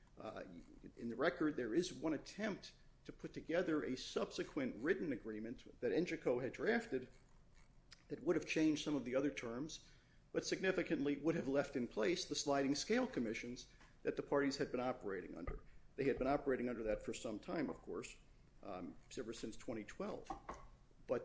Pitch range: 130-175 Hz